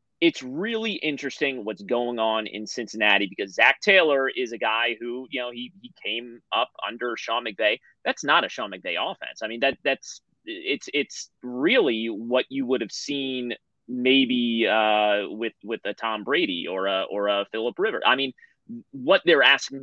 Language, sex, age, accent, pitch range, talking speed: English, male, 30-49, American, 115-185 Hz, 180 wpm